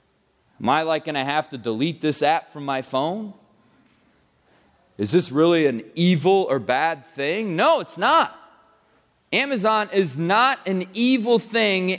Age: 30-49